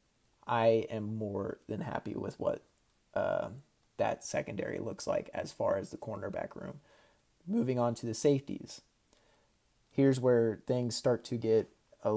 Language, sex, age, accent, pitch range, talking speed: English, male, 30-49, American, 110-120 Hz, 150 wpm